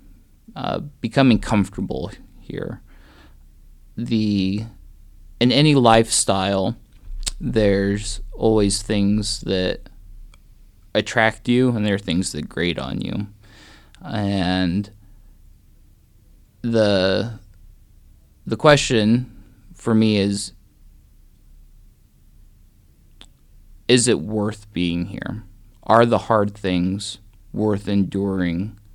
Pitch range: 95-110 Hz